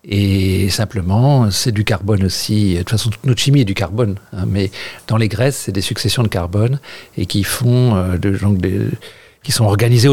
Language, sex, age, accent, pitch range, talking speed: French, male, 50-69, French, 105-135 Hz, 200 wpm